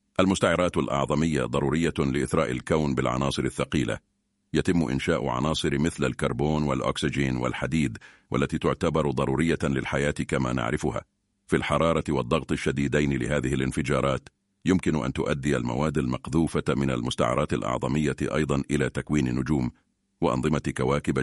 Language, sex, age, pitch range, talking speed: Arabic, male, 50-69, 65-80 Hz, 115 wpm